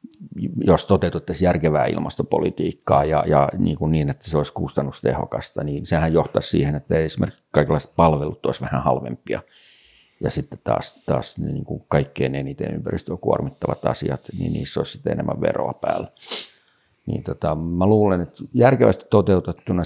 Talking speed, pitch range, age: 140 wpm, 75-90 Hz, 50-69